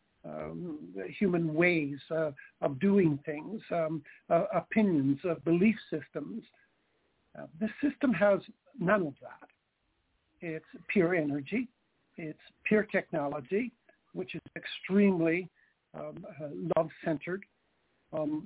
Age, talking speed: 60-79, 110 wpm